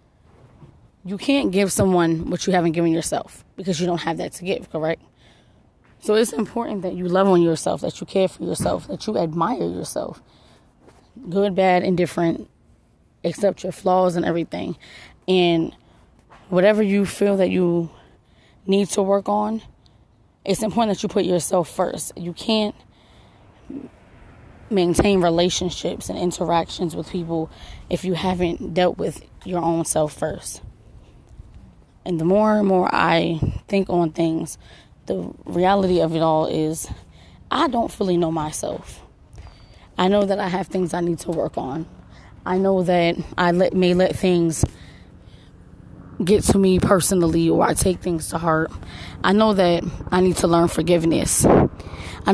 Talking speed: 155 wpm